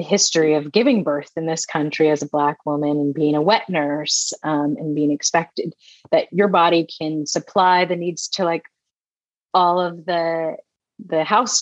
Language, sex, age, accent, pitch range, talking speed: English, female, 30-49, American, 145-170 Hz, 180 wpm